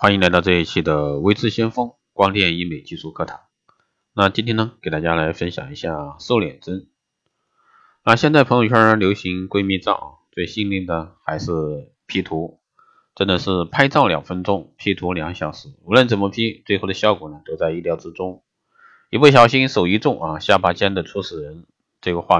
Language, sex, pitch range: Chinese, male, 85-110 Hz